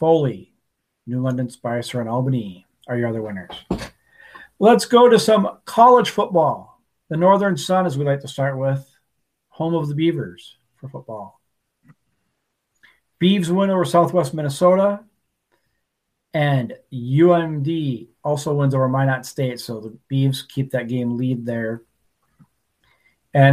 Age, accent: 40-59, American